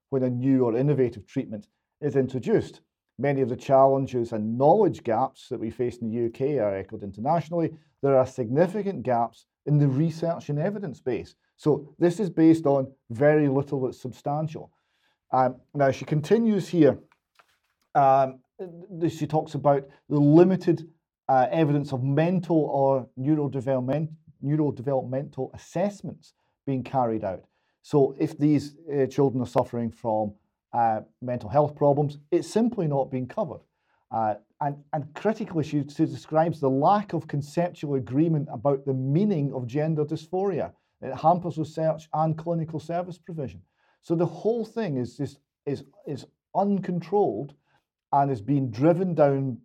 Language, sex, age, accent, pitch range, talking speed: English, male, 40-59, British, 130-160 Hz, 145 wpm